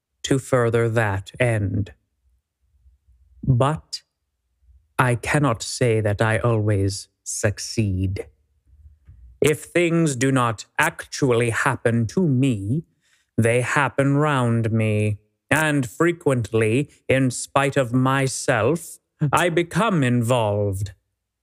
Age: 30-49